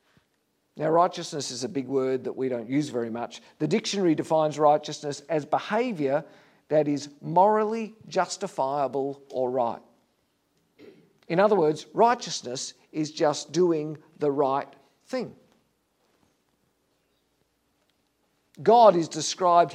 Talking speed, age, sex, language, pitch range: 110 wpm, 50-69, male, English, 150-205 Hz